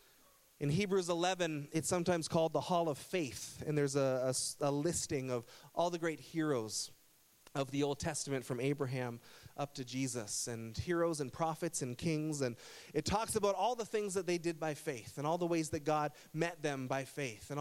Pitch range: 135-180 Hz